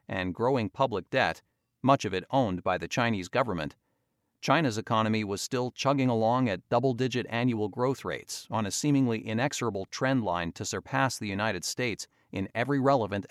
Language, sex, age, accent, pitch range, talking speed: English, male, 40-59, American, 105-130 Hz, 165 wpm